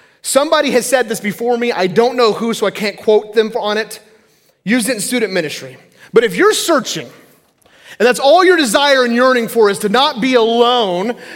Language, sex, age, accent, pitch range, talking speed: English, male, 30-49, American, 175-250 Hz, 205 wpm